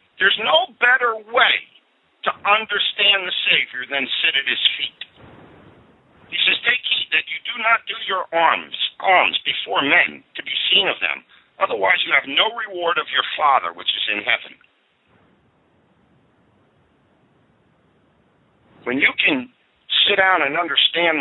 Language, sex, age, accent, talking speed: English, male, 50-69, American, 145 wpm